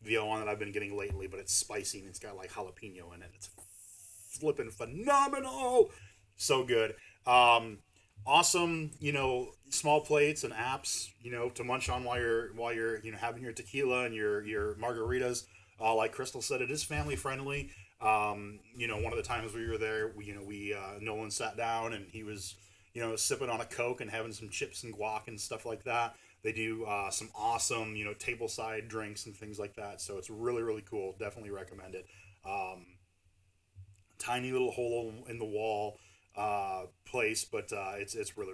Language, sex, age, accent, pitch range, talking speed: English, male, 30-49, American, 100-120 Hz, 200 wpm